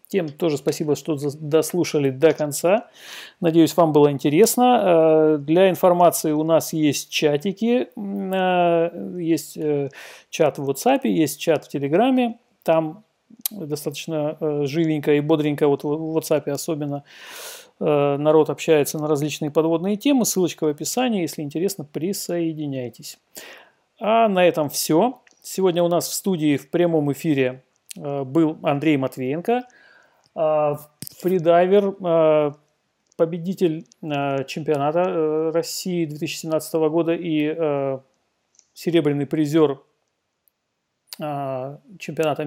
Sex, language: male, Russian